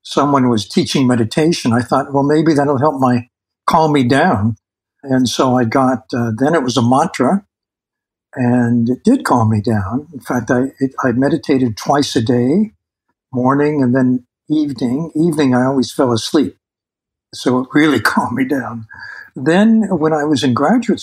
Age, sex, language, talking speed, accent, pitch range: 60-79, male, English, 170 wpm, American, 115-145 Hz